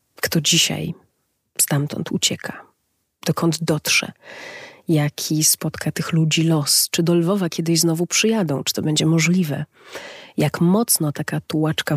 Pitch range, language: 145-180 Hz, Polish